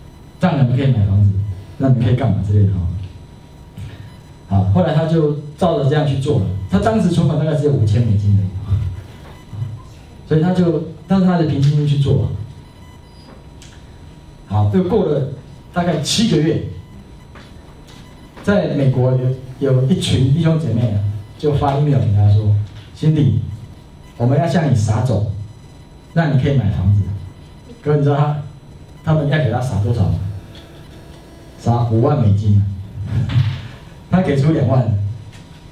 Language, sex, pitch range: Chinese, male, 105-150 Hz